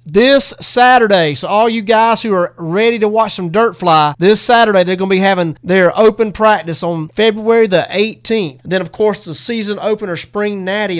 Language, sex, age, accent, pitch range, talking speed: English, male, 30-49, American, 160-190 Hz, 195 wpm